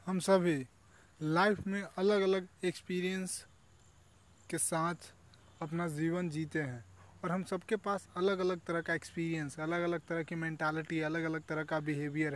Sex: male